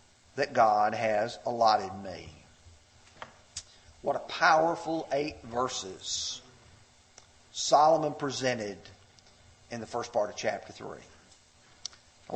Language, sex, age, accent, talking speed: English, male, 40-59, American, 90 wpm